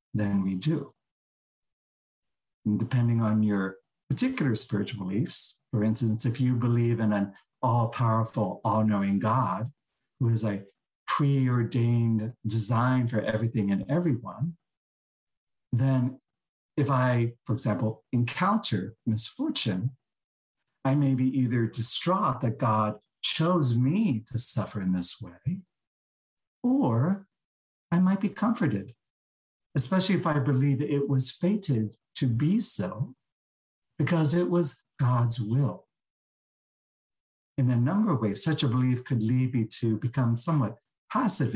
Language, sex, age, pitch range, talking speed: English, male, 50-69, 110-140 Hz, 125 wpm